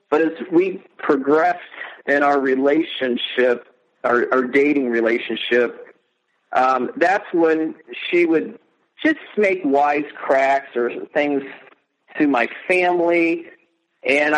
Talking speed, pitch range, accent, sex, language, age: 105 wpm, 135-190 Hz, American, male, English, 50-69